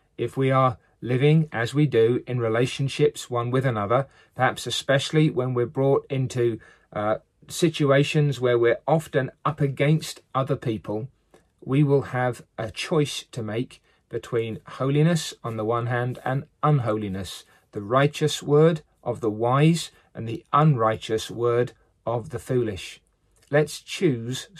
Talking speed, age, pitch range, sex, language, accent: 140 wpm, 40-59, 115-145 Hz, male, English, British